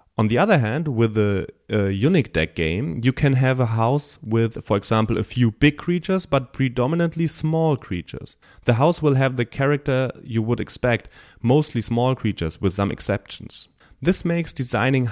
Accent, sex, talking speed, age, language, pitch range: German, male, 175 wpm, 30-49, English, 100-140 Hz